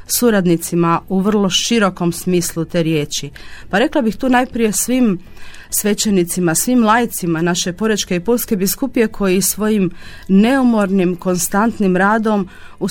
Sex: female